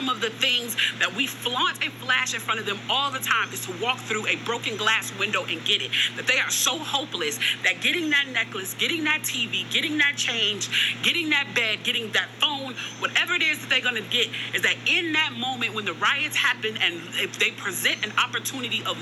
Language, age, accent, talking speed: English, 40-59, American, 225 wpm